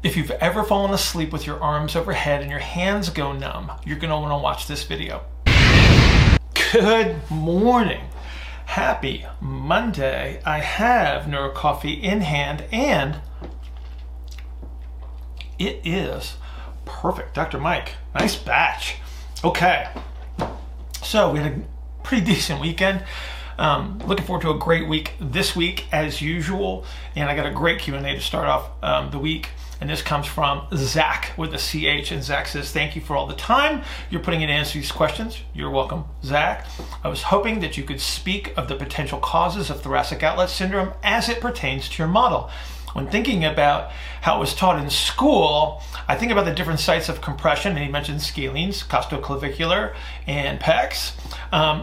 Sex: male